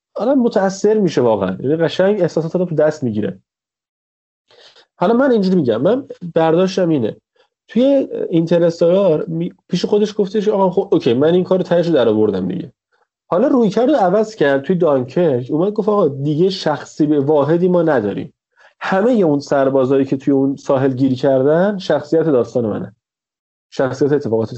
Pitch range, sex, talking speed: 125-185 Hz, male, 150 wpm